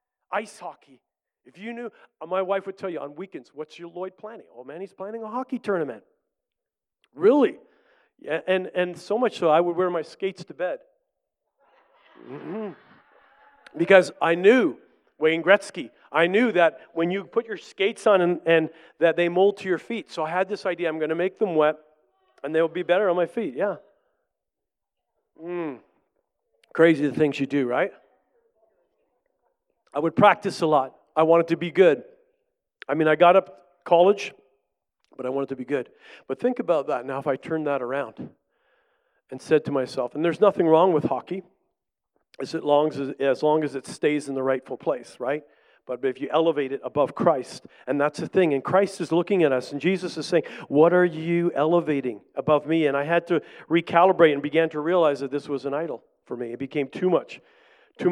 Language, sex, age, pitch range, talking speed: English, male, 40-59, 150-195 Hz, 195 wpm